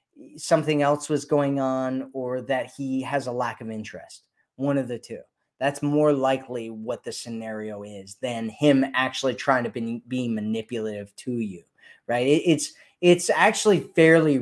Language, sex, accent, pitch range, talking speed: English, male, American, 120-145 Hz, 160 wpm